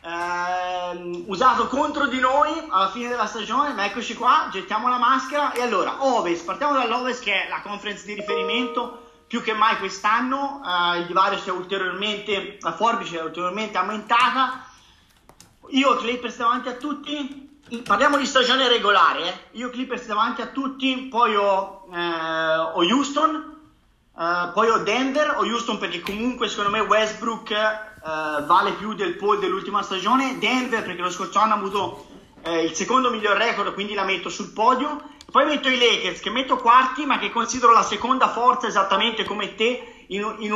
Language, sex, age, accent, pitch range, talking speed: Italian, male, 30-49, native, 195-250 Hz, 165 wpm